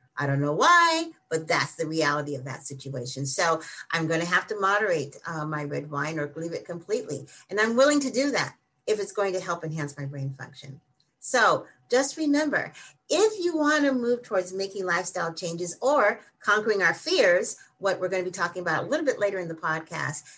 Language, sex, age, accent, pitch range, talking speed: English, female, 50-69, American, 145-215 Hz, 210 wpm